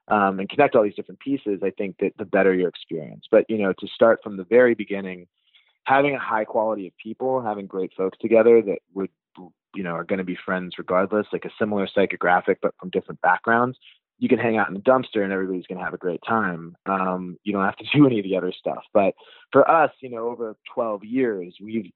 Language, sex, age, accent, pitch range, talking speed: English, male, 20-39, American, 95-115 Hz, 235 wpm